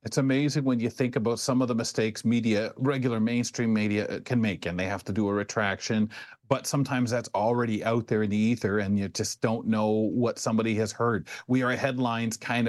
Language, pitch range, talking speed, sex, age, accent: English, 110-140 Hz, 220 wpm, male, 40-59, American